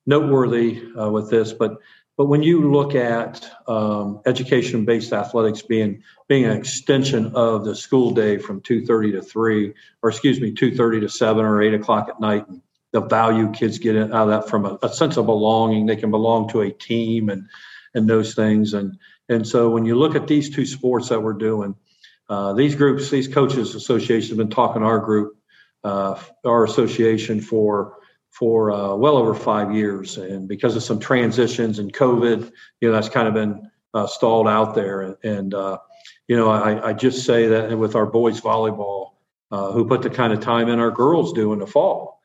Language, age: English, 50-69